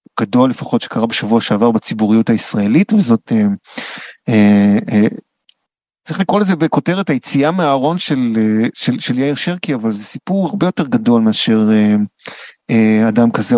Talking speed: 150 wpm